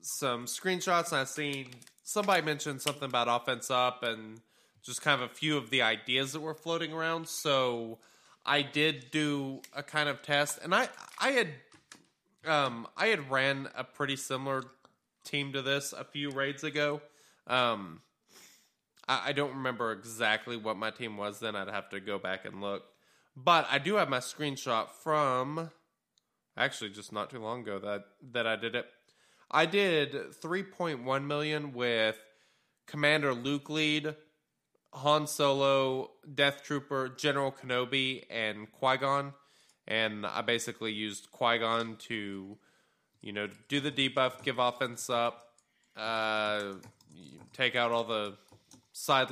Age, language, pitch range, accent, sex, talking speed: 20-39, English, 115-145 Hz, American, male, 150 wpm